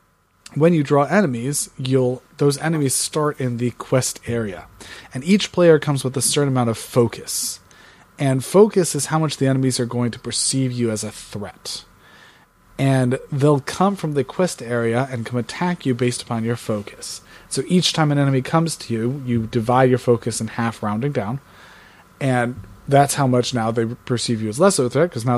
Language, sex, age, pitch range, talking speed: English, male, 30-49, 120-145 Hz, 195 wpm